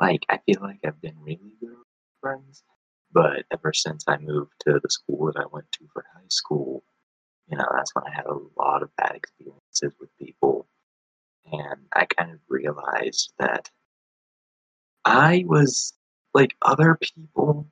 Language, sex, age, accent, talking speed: English, male, 20-39, American, 165 wpm